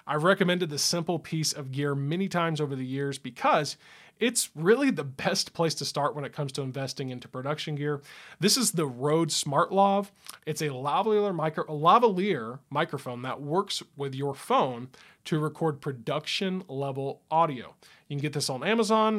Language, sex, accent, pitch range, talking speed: English, male, American, 135-170 Hz, 165 wpm